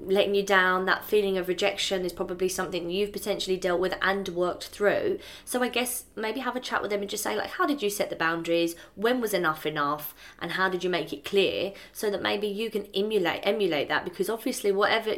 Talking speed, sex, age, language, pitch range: 230 wpm, female, 20-39, English, 170-200 Hz